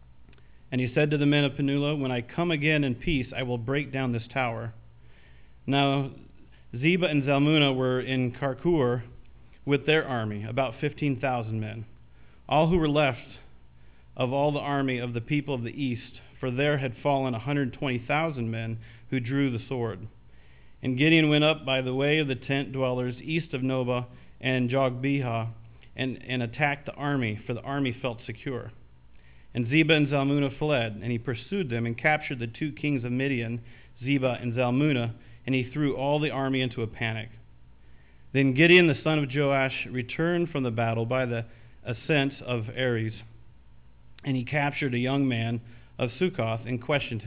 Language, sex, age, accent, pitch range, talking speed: English, male, 40-59, American, 115-140 Hz, 175 wpm